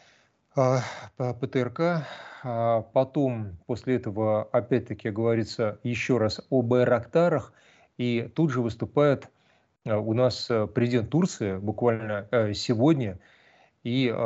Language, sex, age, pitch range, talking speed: Russian, male, 30-49, 110-130 Hz, 90 wpm